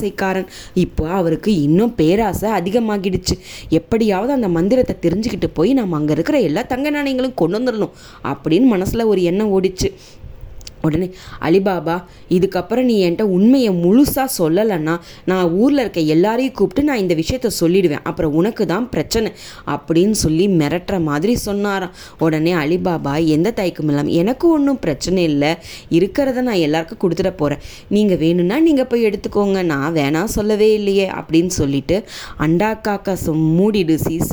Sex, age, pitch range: female, 20-39, 165-220 Hz